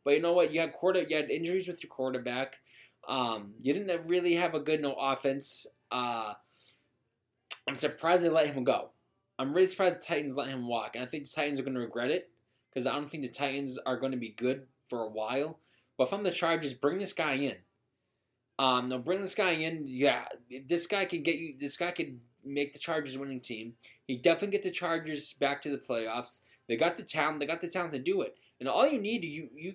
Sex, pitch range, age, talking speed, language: male, 130-165 Hz, 20-39, 235 wpm, English